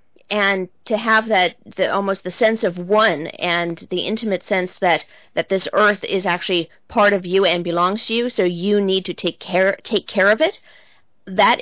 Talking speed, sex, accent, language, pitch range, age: 195 wpm, female, American, English, 180-220 Hz, 40-59